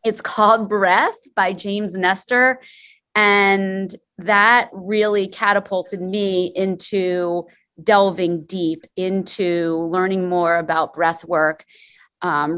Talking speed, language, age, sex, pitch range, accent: 100 wpm, English, 30-49, female, 170-205 Hz, American